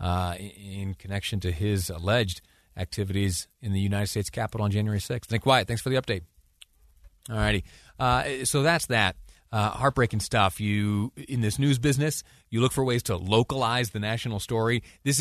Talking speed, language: 180 wpm, English